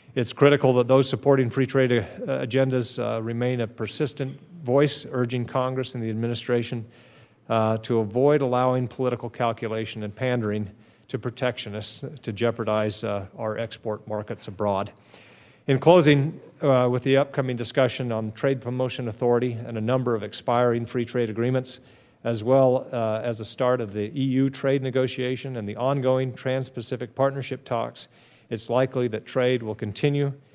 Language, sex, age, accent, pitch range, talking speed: English, male, 40-59, American, 110-130 Hz, 150 wpm